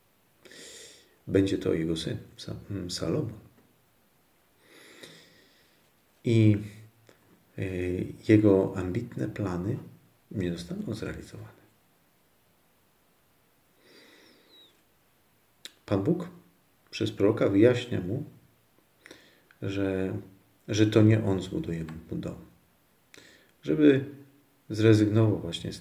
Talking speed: 70 wpm